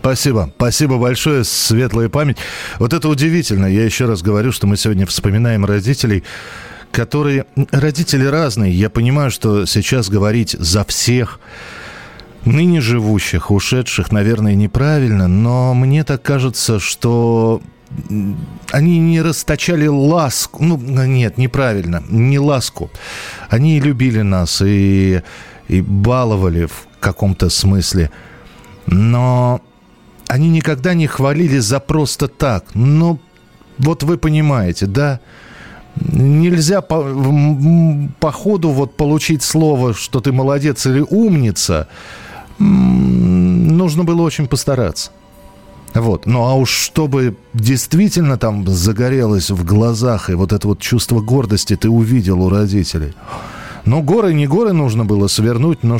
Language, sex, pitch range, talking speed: Russian, male, 105-145 Hz, 120 wpm